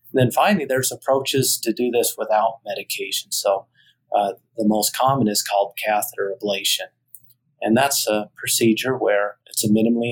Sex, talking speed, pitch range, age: male, 155 wpm, 105-125 Hz, 30-49